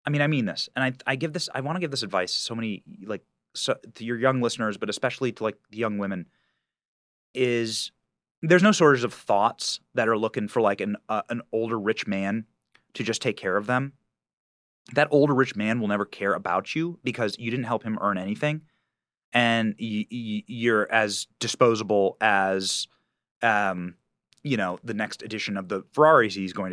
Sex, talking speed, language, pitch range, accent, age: male, 200 wpm, English, 105-150 Hz, American, 30-49